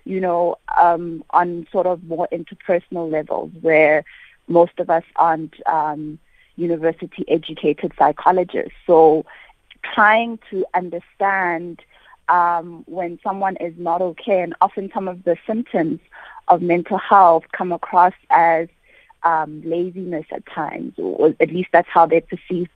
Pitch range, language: 165-190 Hz, English